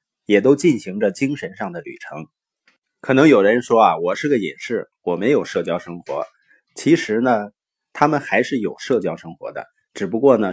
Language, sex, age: Chinese, male, 20-39